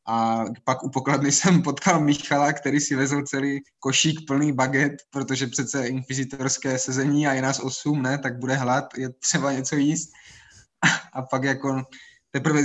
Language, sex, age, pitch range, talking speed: Czech, male, 20-39, 120-140 Hz, 160 wpm